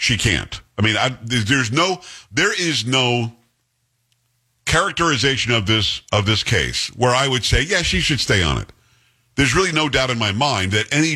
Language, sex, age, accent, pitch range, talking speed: English, male, 50-69, American, 105-135 Hz, 185 wpm